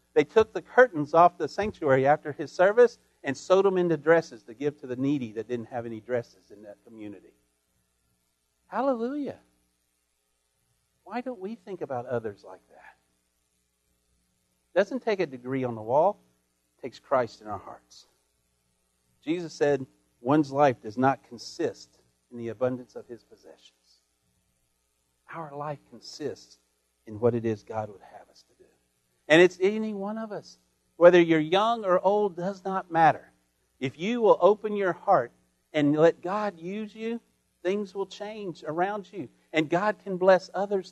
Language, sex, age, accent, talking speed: English, male, 50-69, American, 165 wpm